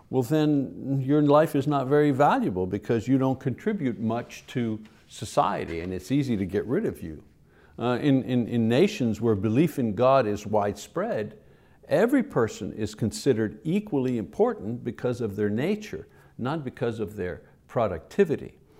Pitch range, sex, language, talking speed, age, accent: 110-150 Hz, male, English, 155 wpm, 60-79, American